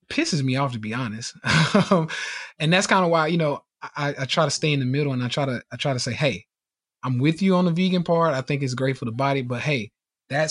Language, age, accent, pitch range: English, 20-39, American, 130-165 Hz